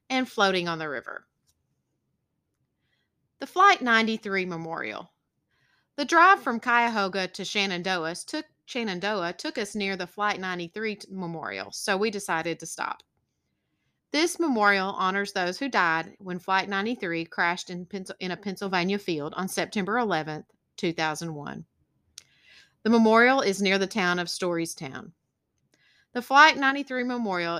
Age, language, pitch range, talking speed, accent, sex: 30-49, English, 175-230 Hz, 125 wpm, American, female